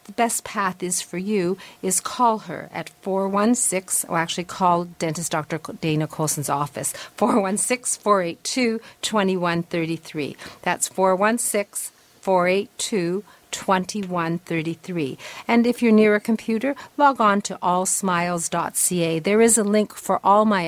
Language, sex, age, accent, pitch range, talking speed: English, female, 50-69, American, 170-215 Hz, 115 wpm